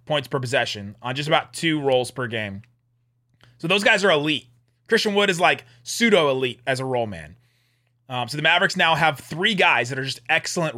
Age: 30-49